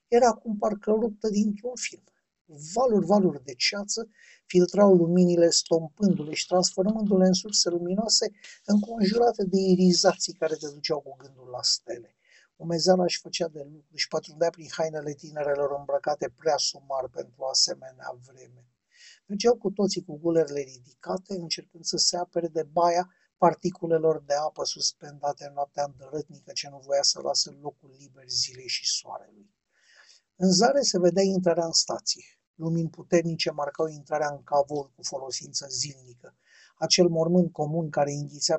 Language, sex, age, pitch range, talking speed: Romanian, male, 50-69, 145-185 Hz, 145 wpm